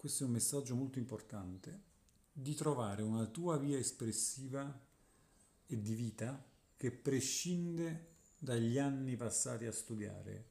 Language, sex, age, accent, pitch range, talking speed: Italian, male, 50-69, native, 110-145 Hz, 125 wpm